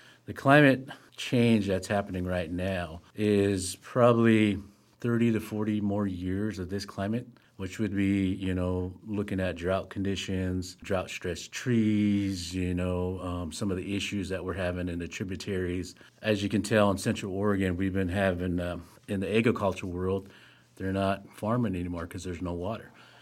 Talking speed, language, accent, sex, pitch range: 165 wpm, English, American, male, 90-105 Hz